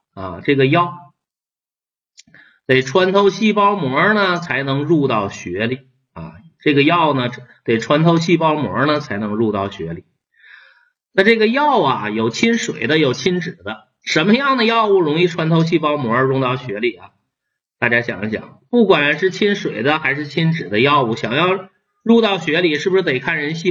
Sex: male